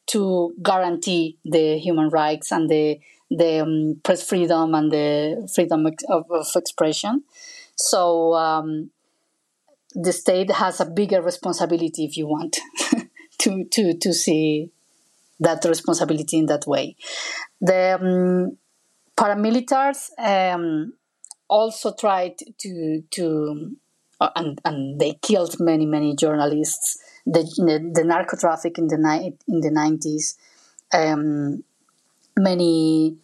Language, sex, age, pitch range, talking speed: English, female, 30-49, 160-195 Hz, 115 wpm